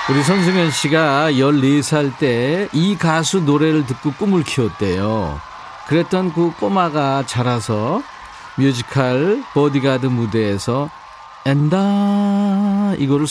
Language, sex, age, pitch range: Korean, male, 40-59, 110-165 Hz